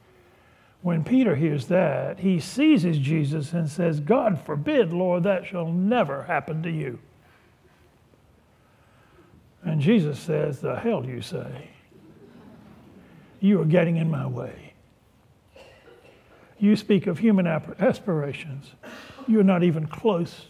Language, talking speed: English, 115 wpm